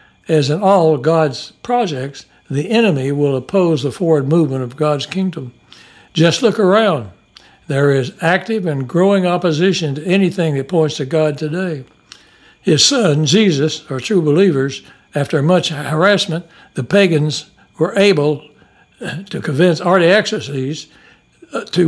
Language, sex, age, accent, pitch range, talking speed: English, male, 60-79, American, 145-185 Hz, 130 wpm